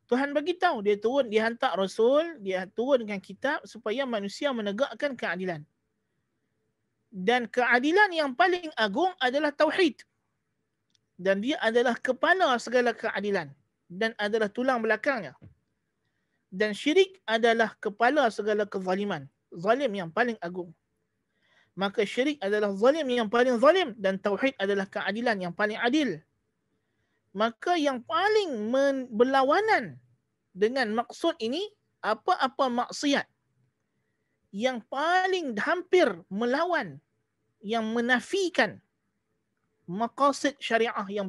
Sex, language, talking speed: male, Malay, 110 wpm